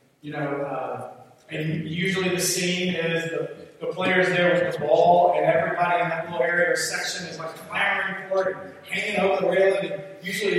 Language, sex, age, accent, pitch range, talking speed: English, male, 40-59, American, 150-185 Hz, 195 wpm